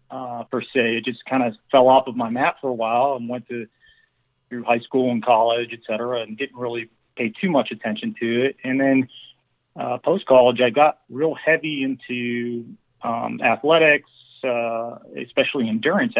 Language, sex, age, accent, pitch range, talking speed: English, male, 40-59, American, 115-135 Hz, 180 wpm